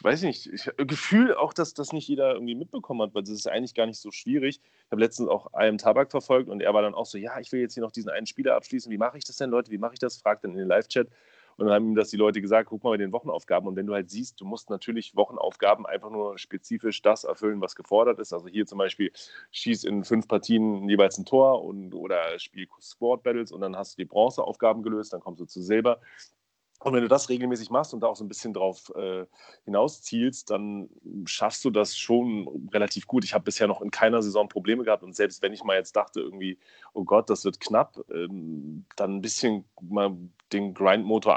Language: German